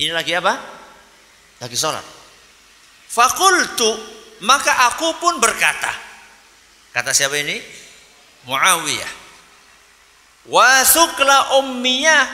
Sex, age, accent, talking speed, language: male, 50-69, native, 80 wpm, Indonesian